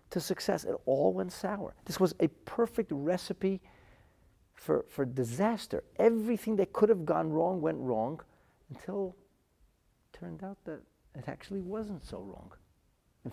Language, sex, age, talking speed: English, male, 40-59, 150 wpm